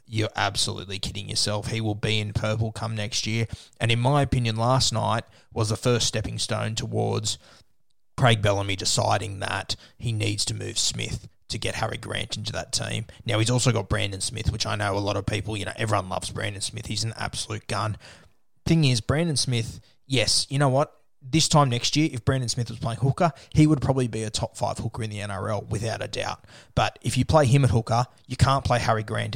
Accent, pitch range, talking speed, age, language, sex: Australian, 105-120 Hz, 220 wpm, 20-39, English, male